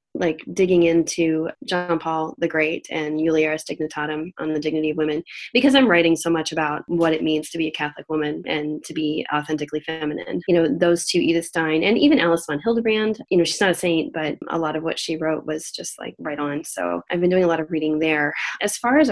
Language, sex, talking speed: English, female, 235 wpm